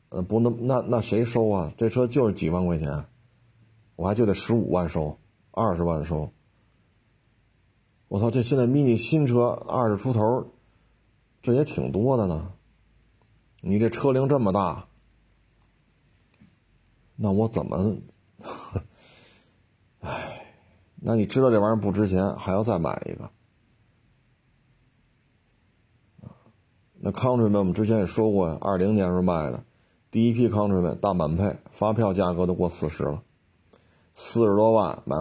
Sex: male